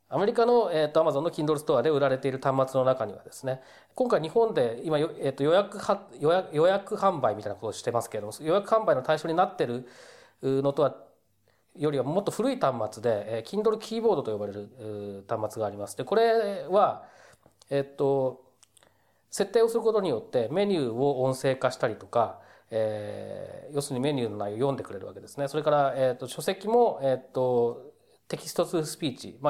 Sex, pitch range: male, 120-195 Hz